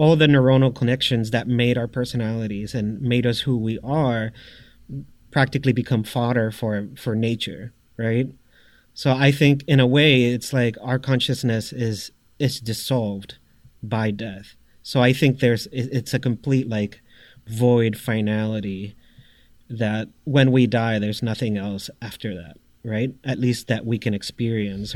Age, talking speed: 30-49, 150 wpm